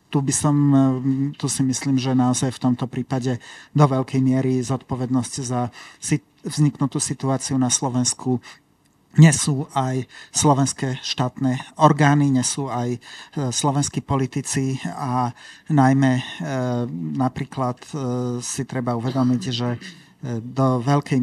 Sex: male